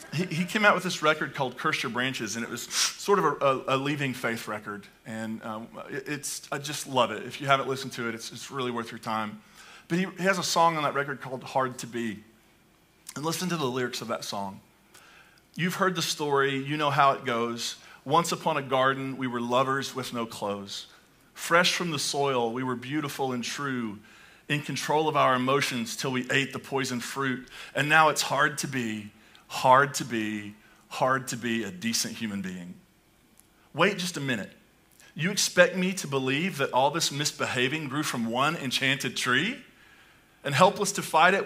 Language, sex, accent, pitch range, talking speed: English, male, American, 125-160 Hz, 200 wpm